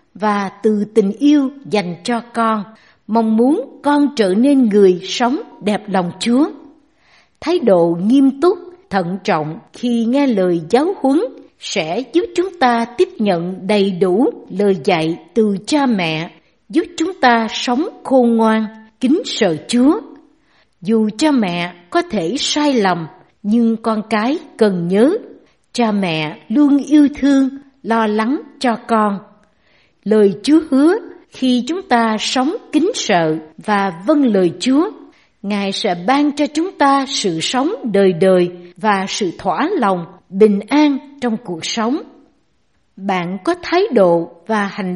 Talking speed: 145 wpm